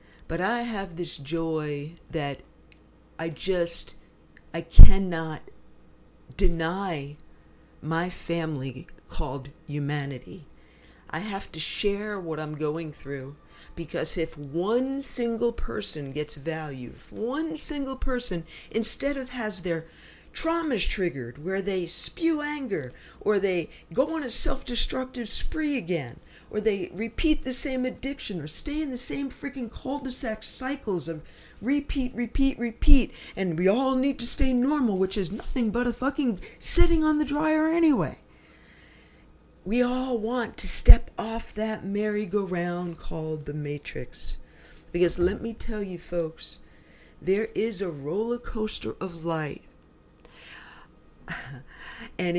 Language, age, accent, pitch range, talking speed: English, 50-69, American, 165-245 Hz, 130 wpm